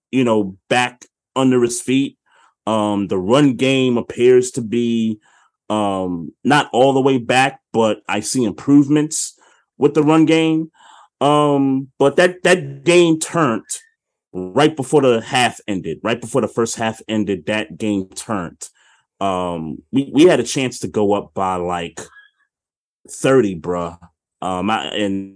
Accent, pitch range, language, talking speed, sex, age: American, 100-135 Hz, English, 150 wpm, male, 30-49